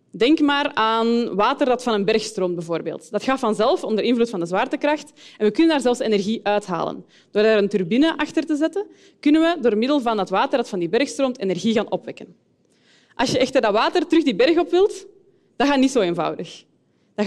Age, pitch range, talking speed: 20-39, 205-290 Hz, 220 wpm